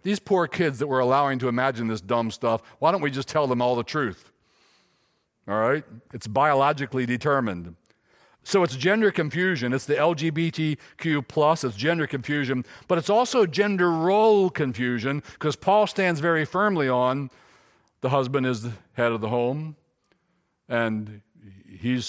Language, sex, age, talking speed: English, male, 60-79, 160 wpm